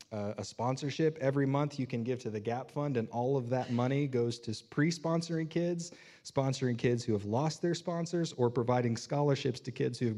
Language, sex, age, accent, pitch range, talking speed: English, male, 30-49, American, 115-145 Hz, 205 wpm